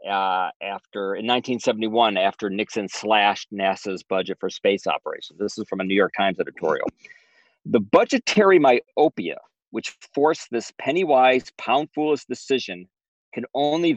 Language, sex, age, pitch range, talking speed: English, male, 40-59, 110-160 Hz, 135 wpm